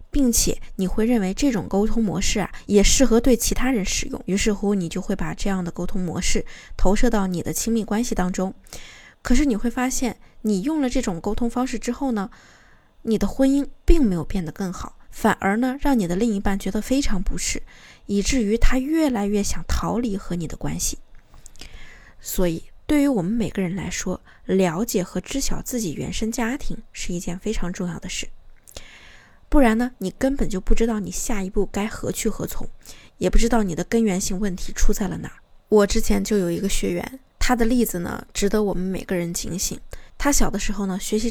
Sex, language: female, Chinese